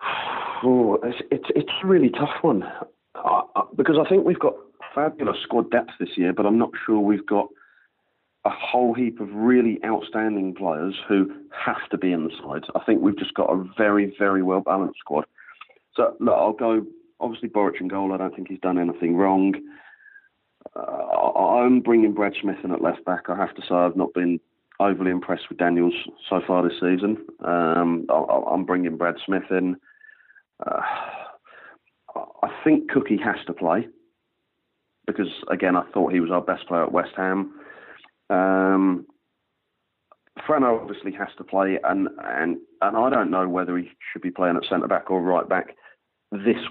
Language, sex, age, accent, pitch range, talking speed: English, male, 40-59, British, 90-120 Hz, 180 wpm